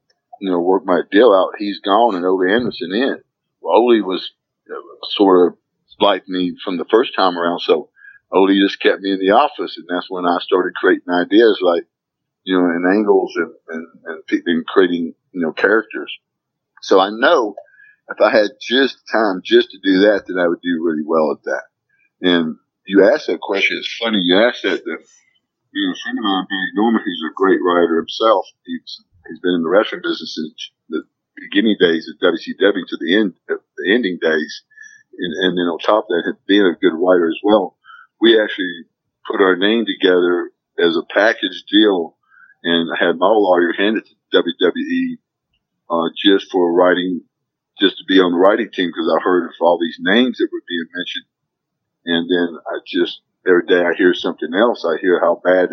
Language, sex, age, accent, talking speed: English, male, 50-69, American, 195 wpm